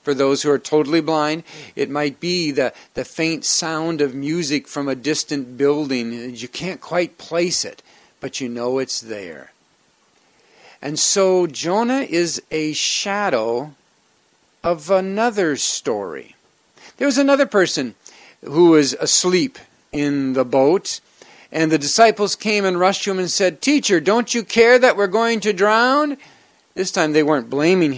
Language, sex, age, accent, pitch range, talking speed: English, male, 50-69, American, 145-210 Hz, 155 wpm